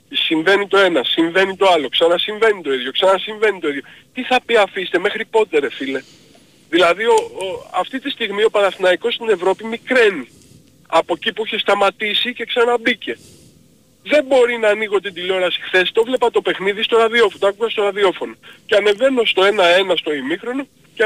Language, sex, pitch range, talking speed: Greek, male, 185-265 Hz, 175 wpm